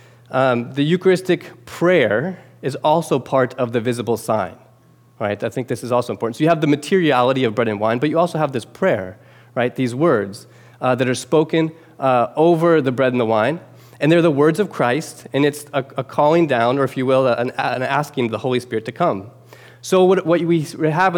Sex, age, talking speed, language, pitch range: male, 20-39, 220 wpm, English, 120-145 Hz